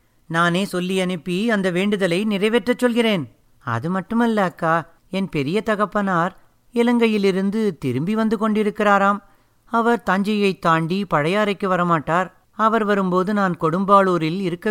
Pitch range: 175-215 Hz